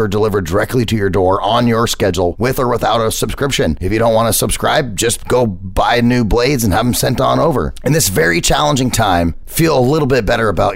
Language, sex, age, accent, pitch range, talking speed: English, male, 30-49, American, 95-120 Hz, 230 wpm